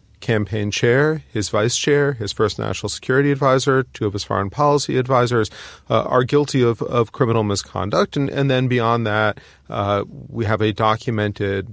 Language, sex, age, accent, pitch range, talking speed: English, male, 40-59, American, 105-130 Hz, 170 wpm